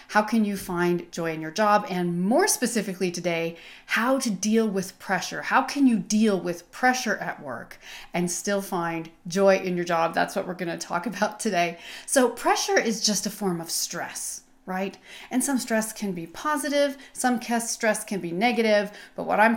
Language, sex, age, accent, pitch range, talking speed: English, female, 40-59, American, 190-240 Hz, 195 wpm